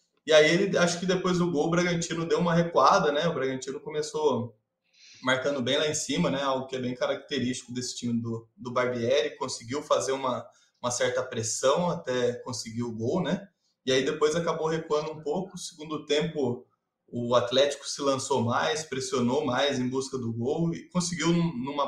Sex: male